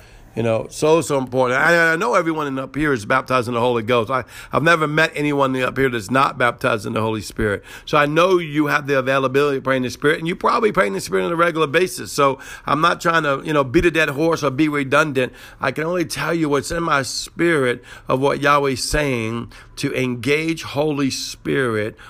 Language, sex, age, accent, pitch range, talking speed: English, male, 50-69, American, 125-160 Hz, 225 wpm